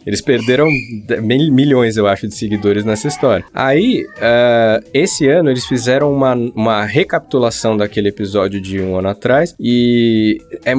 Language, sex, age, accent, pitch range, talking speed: Portuguese, male, 20-39, Brazilian, 110-140 Hz, 145 wpm